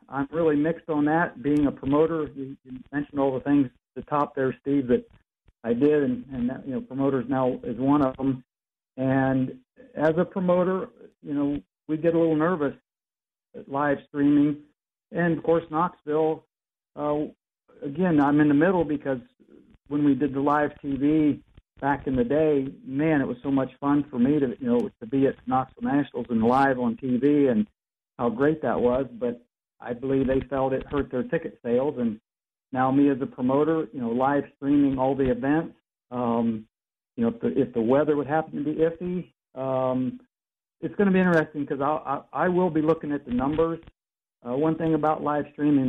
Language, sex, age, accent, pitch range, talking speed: English, male, 50-69, American, 130-155 Hz, 195 wpm